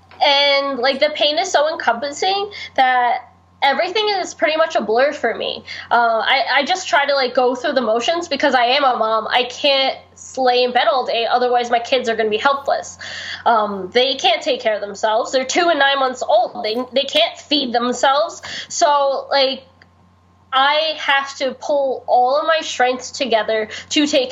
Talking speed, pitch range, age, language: 190 wpm, 245-315 Hz, 10-29, English